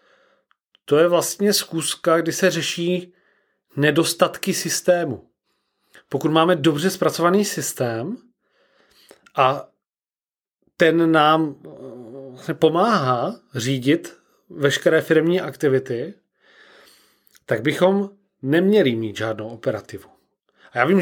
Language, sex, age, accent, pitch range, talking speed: Czech, male, 30-49, native, 135-175 Hz, 90 wpm